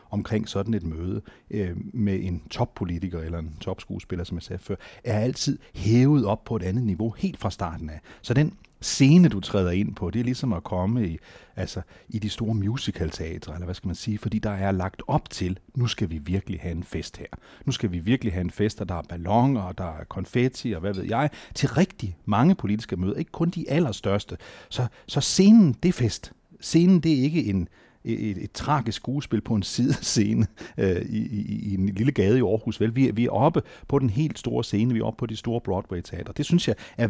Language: Danish